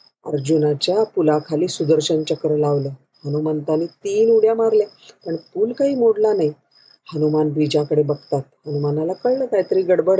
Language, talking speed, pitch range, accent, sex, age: Marathi, 125 wpm, 155-205 Hz, native, female, 40-59